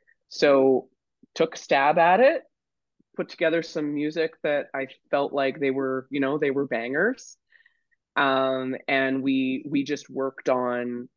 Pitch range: 125-145 Hz